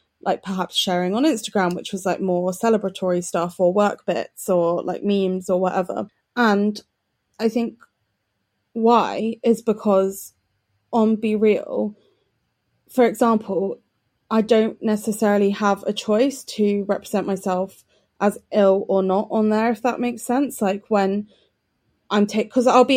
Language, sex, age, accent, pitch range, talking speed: English, female, 20-39, British, 180-220 Hz, 145 wpm